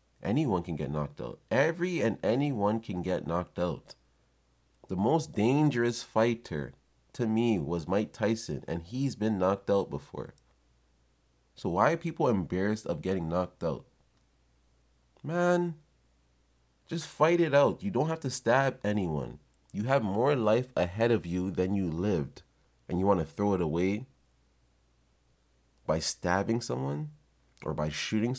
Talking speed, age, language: 150 wpm, 30-49, English